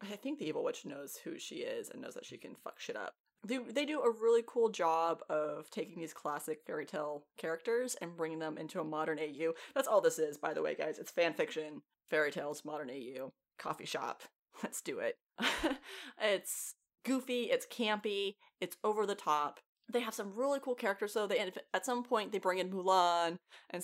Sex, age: female, 20-39